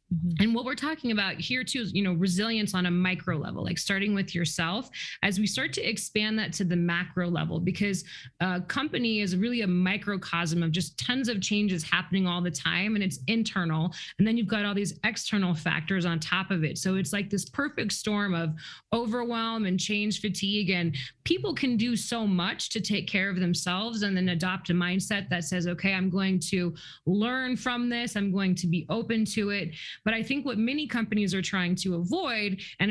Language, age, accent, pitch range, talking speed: English, 20-39, American, 180-215 Hz, 210 wpm